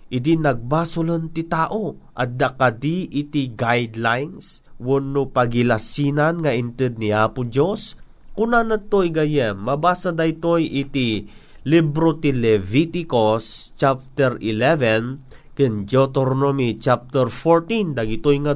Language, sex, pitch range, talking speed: Filipino, male, 130-170 Hz, 105 wpm